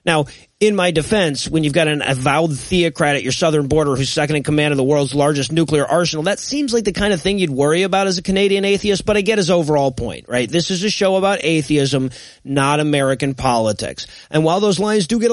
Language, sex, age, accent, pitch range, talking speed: English, male, 30-49, American, 140-180 Hz, 235 wpm